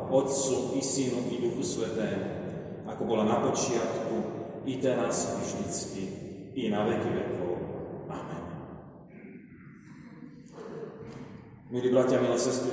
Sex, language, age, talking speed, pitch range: male, Slovak, 30-49, 105 wpm, 110-130 Hz